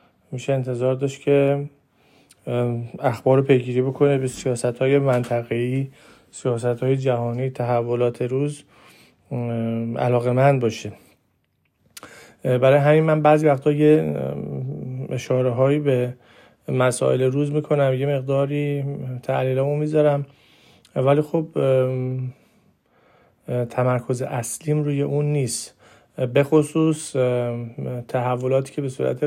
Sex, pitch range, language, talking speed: male, 125-145 Hz, Persian, 90 wpm